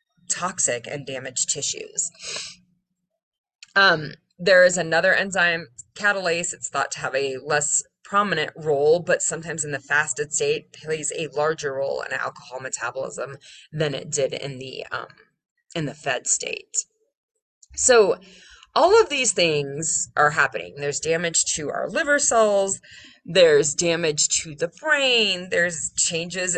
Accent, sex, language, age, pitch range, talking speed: American, female, English, 20-39, 150-230 Hz, 140 wpm